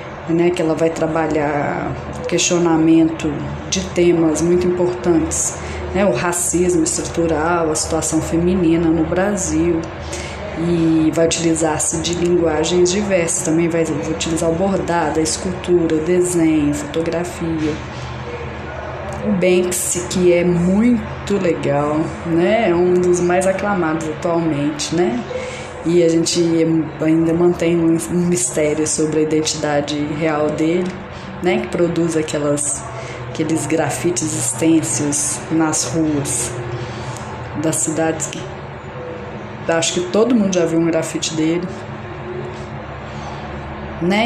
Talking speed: 115 wpm